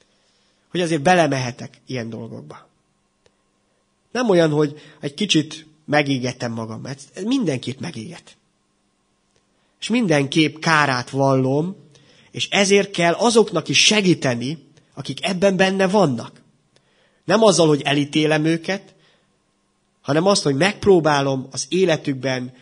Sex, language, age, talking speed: male, Hungarian, 30-49, 105 wpm